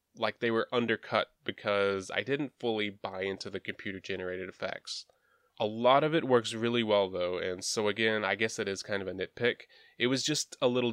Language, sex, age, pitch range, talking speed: English, male, 20-39, 100-125 Hz, 205 wpm